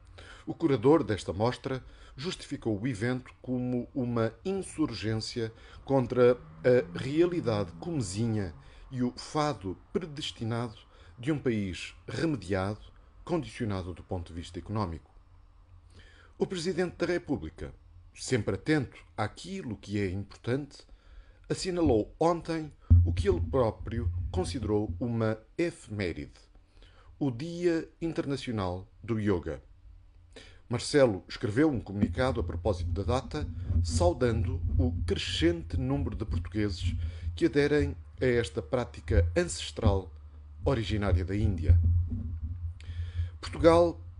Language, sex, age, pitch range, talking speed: Portuguese, male, 50-69, 85-125 Hz, 105 wpm